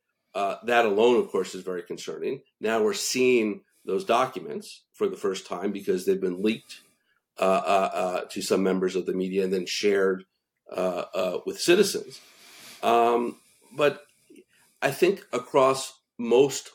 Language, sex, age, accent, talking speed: English, male, 50-69, American, 155 wpm